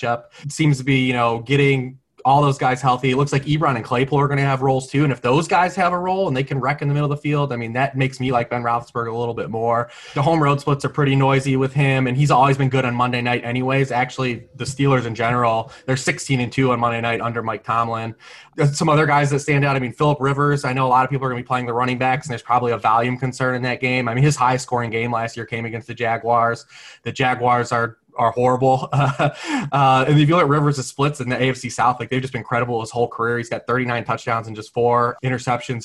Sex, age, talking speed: male, 20-39, 275 wpm